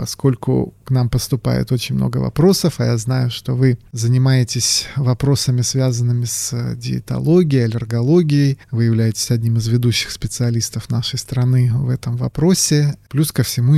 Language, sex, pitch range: Russian, male, 120-150 Hz